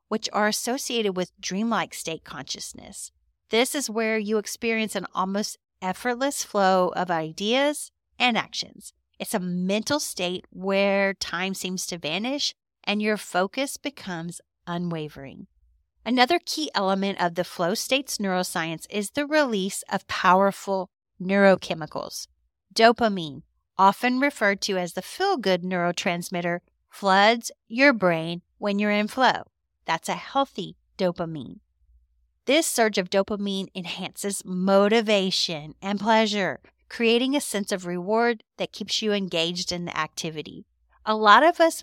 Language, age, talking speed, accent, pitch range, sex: English, 40-59, 130 wpm, American, 180-220 Hz, female